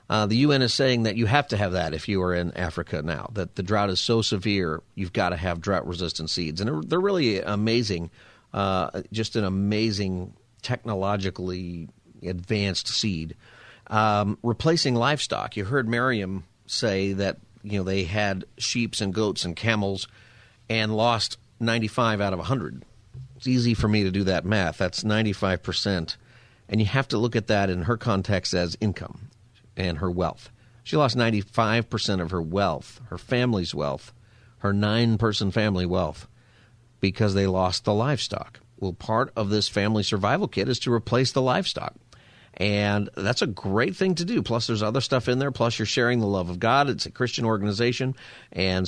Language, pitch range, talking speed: English, 100-120 Hz, 175 wpm